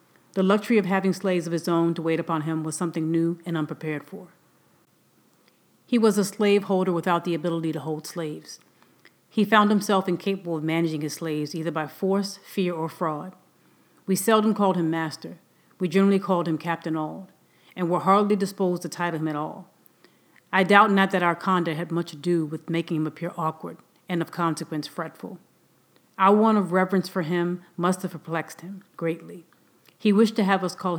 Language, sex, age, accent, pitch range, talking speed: English, female, 40-59, American, 165-190 Hz, 190 wpm